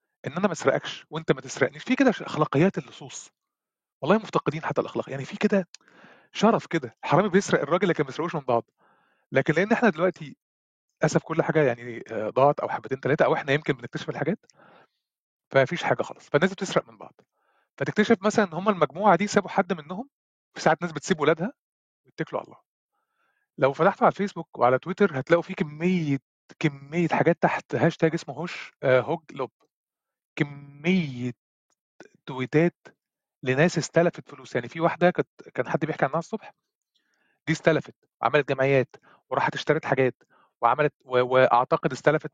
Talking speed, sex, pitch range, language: 155 wpm, male, 140-175 Hz, Arabic